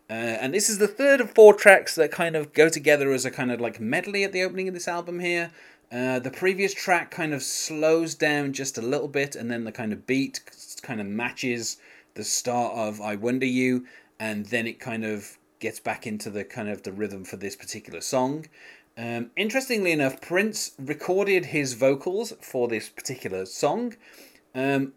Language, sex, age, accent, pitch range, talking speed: English, male, 30-49, British, 115-160 Hz, 200 wpm